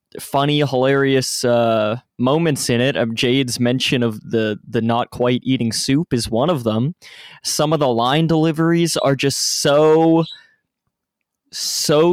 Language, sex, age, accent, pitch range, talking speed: English, male, 20-39, American, 115-145 Hz, 140 wpm